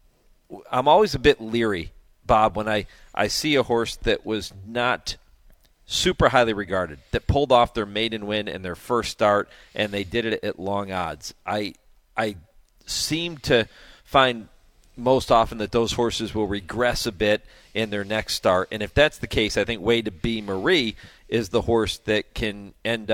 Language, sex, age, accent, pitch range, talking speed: English, male, 40-59, American, 100-120 Hz, 180 wpm